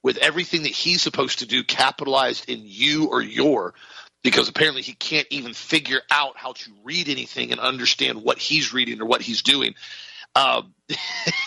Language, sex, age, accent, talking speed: English, male, 40-59, American, 175 wpm